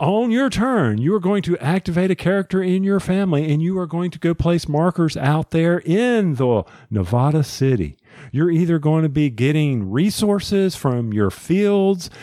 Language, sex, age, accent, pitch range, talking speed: English, male, 50-69, American, 135-185 Hz, 180 wpm